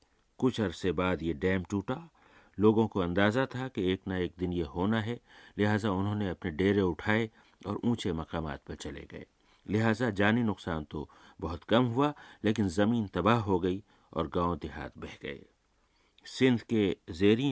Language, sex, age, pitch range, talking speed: Hindi, male, 50-69, 85-110 Hz, 170 wpm